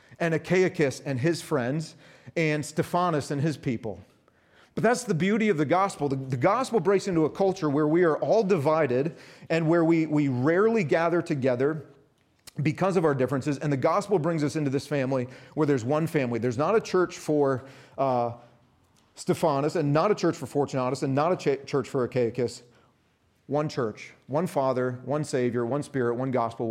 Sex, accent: male, American